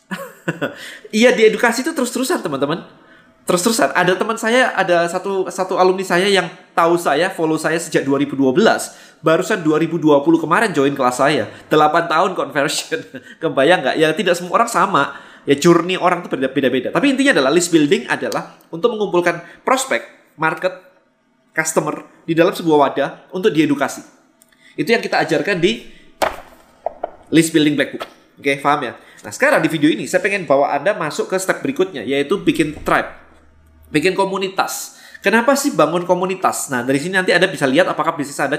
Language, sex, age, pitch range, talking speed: Indonesian, male, 20-39, 150-195 Hz, 165 wpm